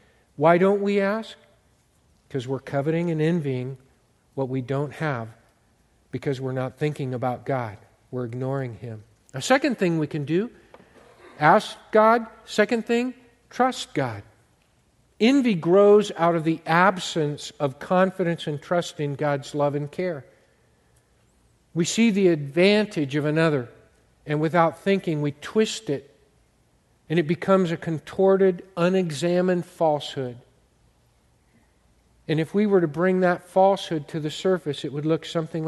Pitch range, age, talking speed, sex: 135-180 Hz, 50-69, 140 wpm, male